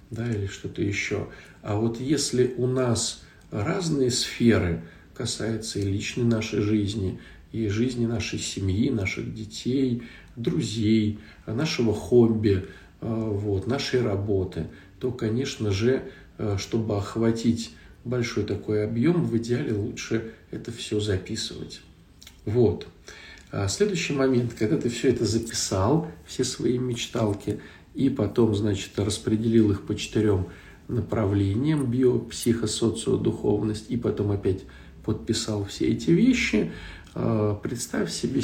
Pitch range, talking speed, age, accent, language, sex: 100-125 Hz, 110 wpm, 50-69, native, Russian, male